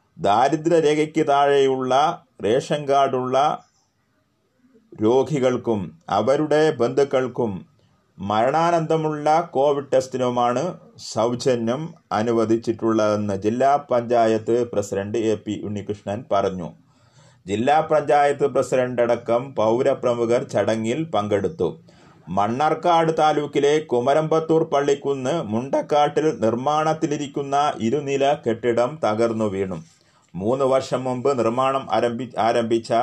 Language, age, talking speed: Malayalam, 30-49, 75 wpm